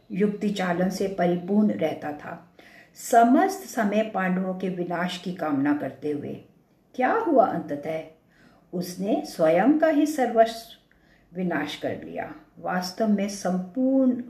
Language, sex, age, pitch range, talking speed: English, female, 50-69, 180-250 Hz, 120 wpm